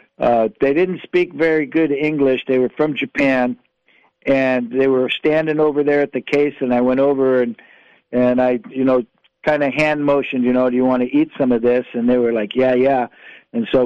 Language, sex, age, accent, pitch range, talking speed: English, male, 50-69, American, 125-155 Hz, 220 wpm